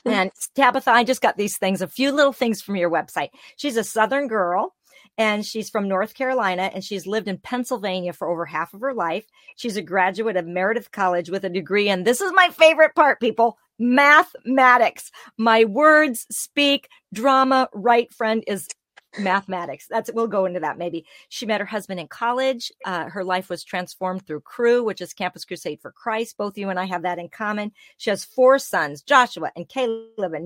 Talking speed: 195 wpm